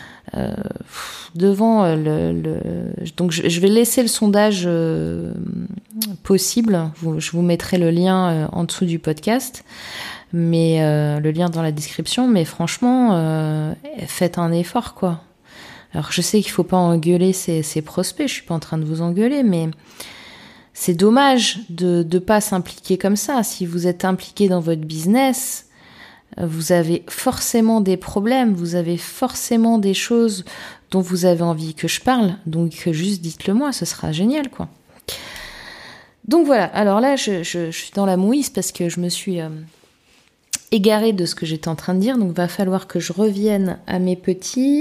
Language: French